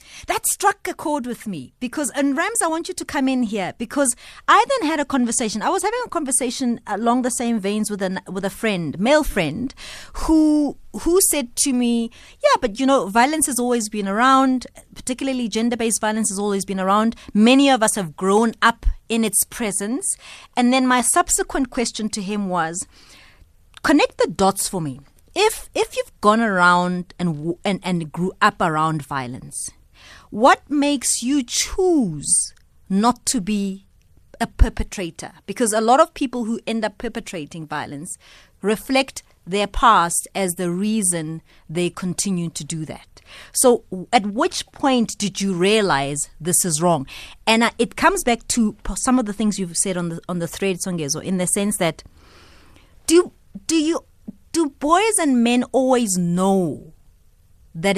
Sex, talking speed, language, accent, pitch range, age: female, 170 wpm, English, South African, 180-260 Hz, 30-49